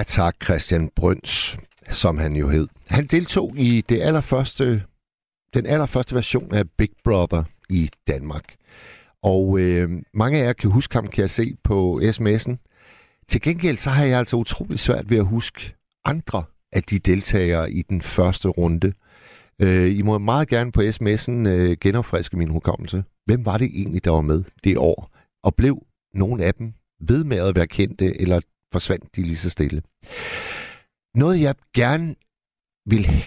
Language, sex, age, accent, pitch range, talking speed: Danish, male, 60-79, native, 85-115 Hz, 155 wpm